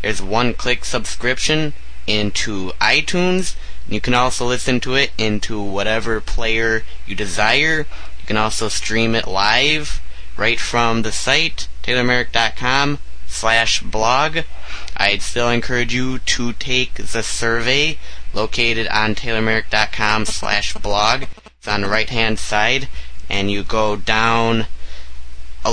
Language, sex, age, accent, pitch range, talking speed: English, male, 20-39, American, 100-125 Hz, 120 wpm